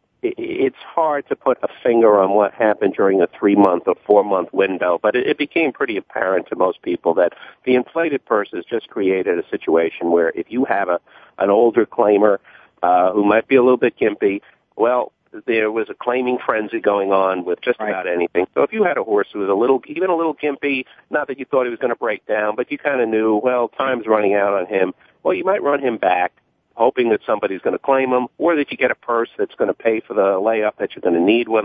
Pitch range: 105-145 Hz